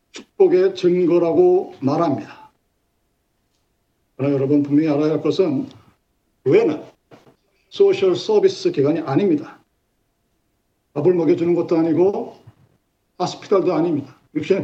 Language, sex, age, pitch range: Korean, male, 50-69, 155-215 Hz